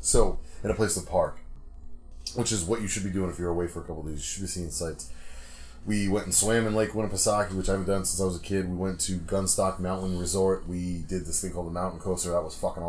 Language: English